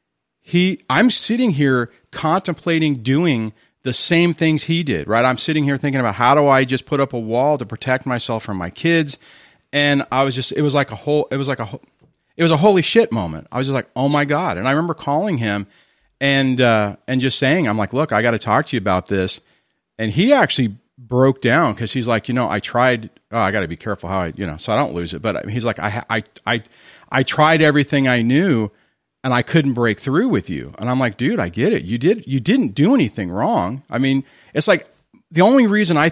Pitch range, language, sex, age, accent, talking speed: 115-155 Hz, English, male, 40-59, American, 240 wpm